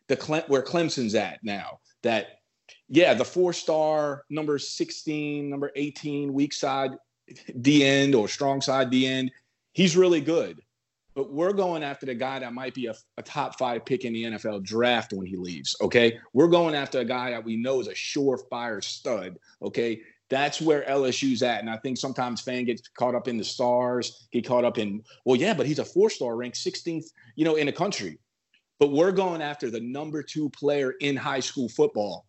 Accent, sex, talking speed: American, male, 200 wpm